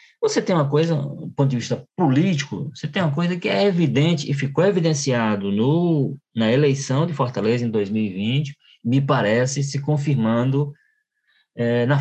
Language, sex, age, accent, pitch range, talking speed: Portuguese, male, 20-39, Brazilian, 115-150 Hz, 150 wpm